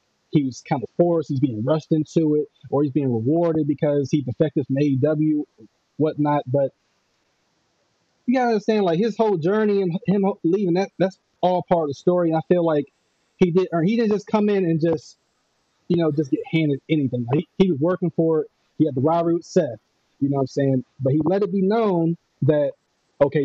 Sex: male